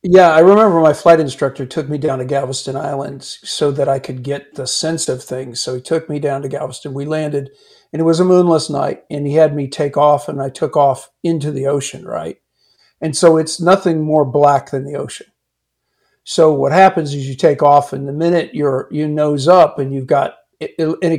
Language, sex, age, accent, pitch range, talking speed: English, male, 50-69, American, 135-160 Hz, 220 wpm